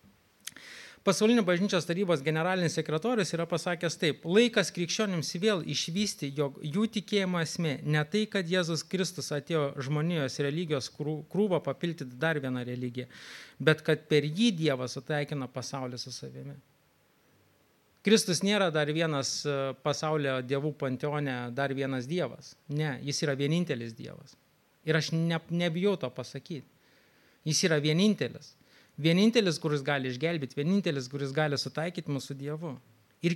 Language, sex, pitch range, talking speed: English, male, 140-175 Hz, 130 wpm